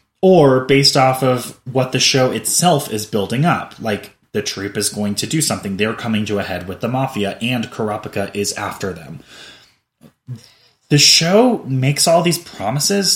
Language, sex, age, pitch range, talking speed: English, male, 20-39, 110-140 Hz, 175 wpm